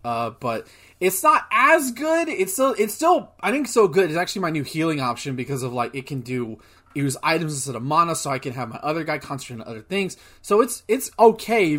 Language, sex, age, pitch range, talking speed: English, male, 20-39, 130-175 Hz, 235 wpm